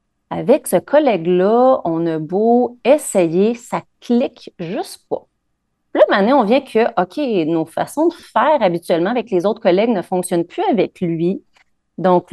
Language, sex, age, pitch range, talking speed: French, female, 30-49, 175-225 Hz, 155 wpm